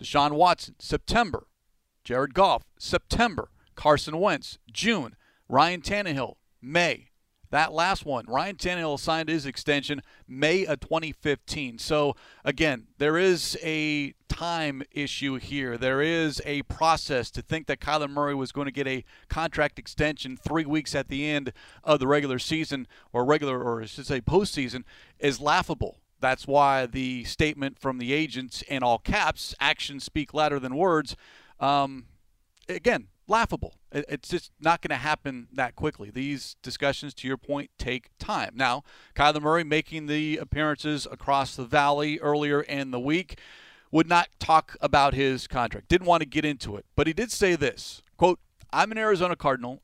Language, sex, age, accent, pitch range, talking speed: English, male, 40-59, American, 135-155 Hz, 160 wpm